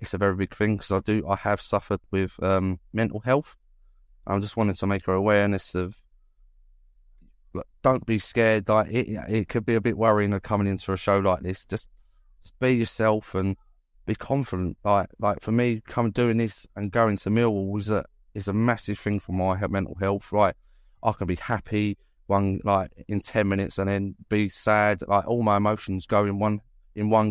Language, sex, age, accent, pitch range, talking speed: English, male, 20-39, British, 95-110 Hz, 205 wpm